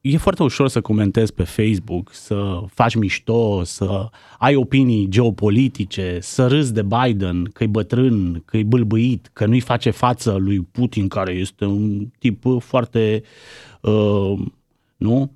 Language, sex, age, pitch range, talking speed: Romanian, male, 30-49, 105-135 Hz, 135 wpm